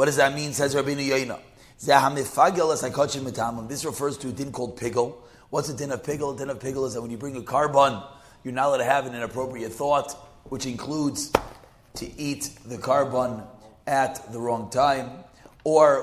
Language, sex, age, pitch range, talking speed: English, male, 30-49, 120-145 Hz, 185 wpm